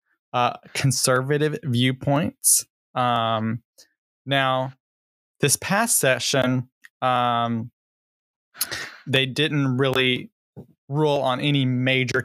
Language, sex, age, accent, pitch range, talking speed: English, male, 20-39, American, 115-135 Hz, 80 wpm